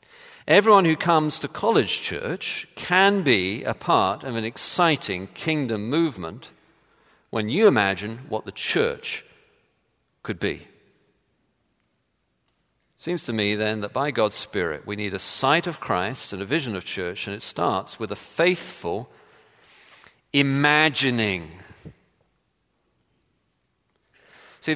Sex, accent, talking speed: male, British, 125 wpm